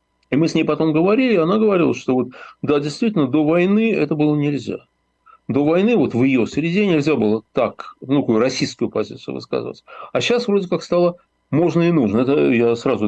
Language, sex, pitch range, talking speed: Russian, male, 110-155 Hz, 195 wpm